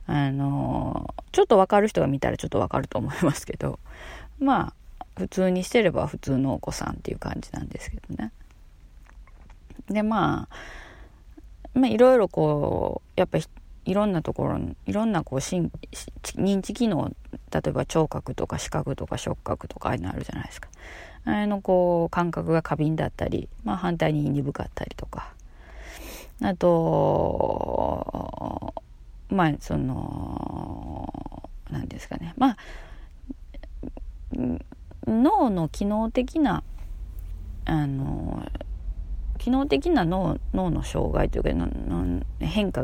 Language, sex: Japanese, female